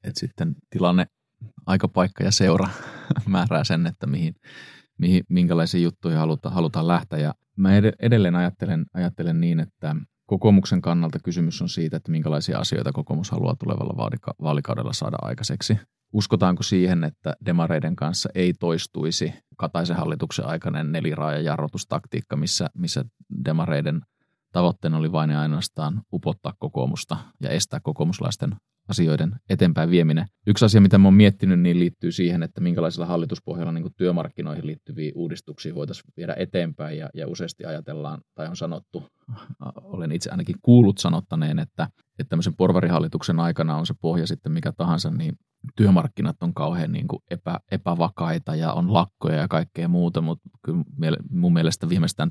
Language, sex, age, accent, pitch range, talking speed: Finnish, male, 30-49, native, 85-110 Hz, 140 wpm